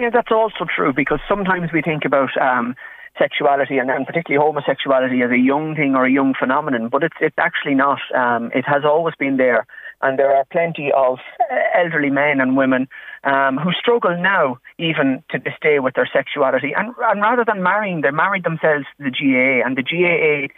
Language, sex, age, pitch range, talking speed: English, male, 30-49, 135-180 Hz, 195 wpm